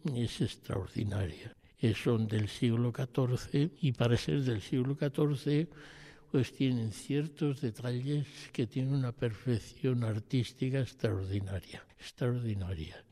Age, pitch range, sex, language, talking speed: 60-79, 110-135 Hz, male, Spanish, 105 wpm